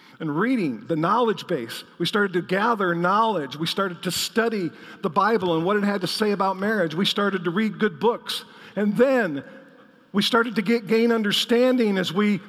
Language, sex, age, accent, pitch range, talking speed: English, male, 50-69, American, 195-250 Hz, 190 wpm